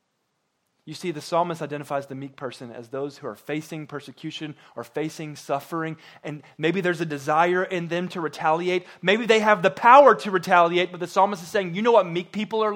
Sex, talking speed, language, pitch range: male, 205 wpm, English, 125-170 Hz